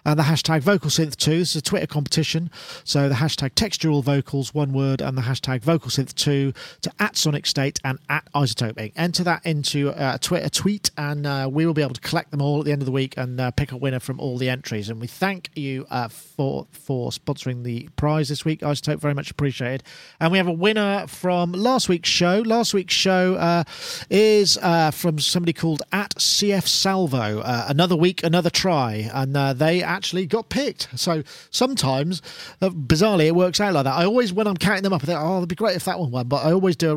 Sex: male